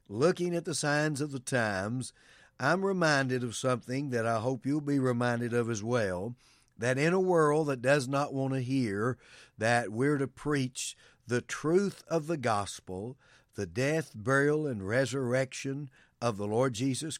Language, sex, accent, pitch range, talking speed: English, male, American, 125-150 Hz, 170 wpm